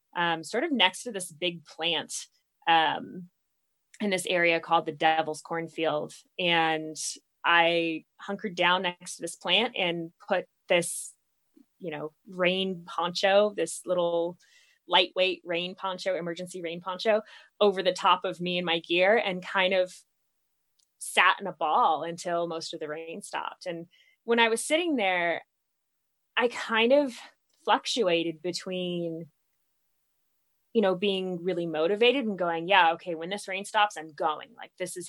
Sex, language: female, English